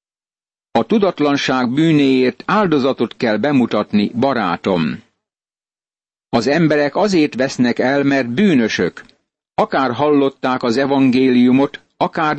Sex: male